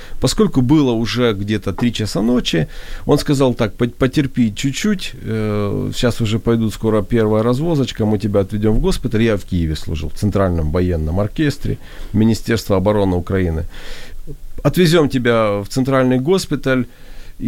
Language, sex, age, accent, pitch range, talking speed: Ukrainian, male, 40-59, native, 95-125 Hz, 135 wpm